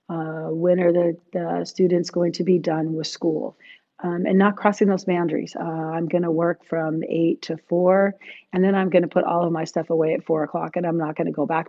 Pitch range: 155-175 Hz